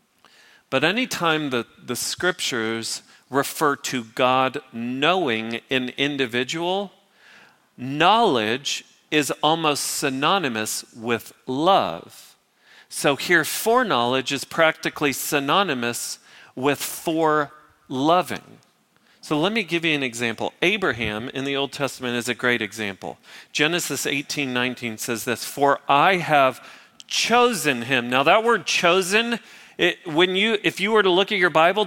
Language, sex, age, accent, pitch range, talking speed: English, male, 40-59, American, 135-195 Hz, 125 wpm